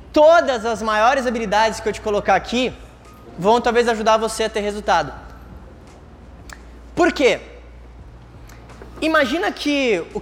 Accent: Brazilian